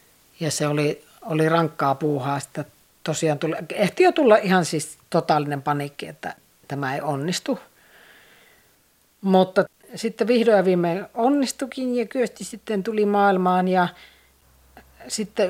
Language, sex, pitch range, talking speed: Finnish, female, 150-185 Hz, 130 wpm